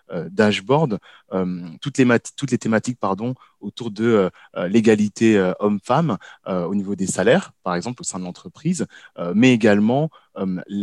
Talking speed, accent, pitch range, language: 175 wpm, French, 95-125 Hz, French